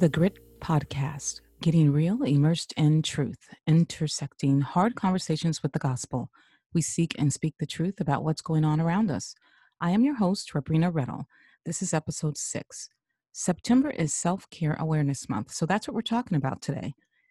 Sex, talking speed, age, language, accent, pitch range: female, 165 wpm, 40-59, English, American, 150-205 Hz